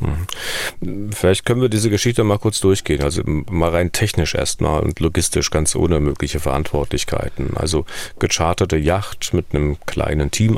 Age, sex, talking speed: 40-59, male, 150 wpm